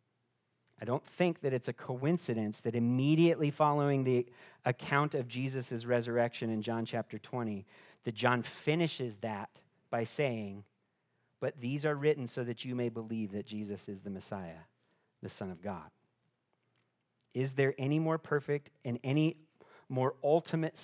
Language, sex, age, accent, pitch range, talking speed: English, male, 40-59, American, 115-150 Hz, 150 wpm